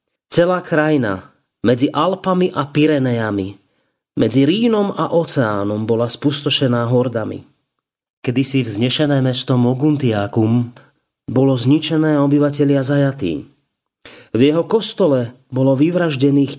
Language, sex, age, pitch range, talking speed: English, male, 30-49, 120-150 Hz, 95 wpm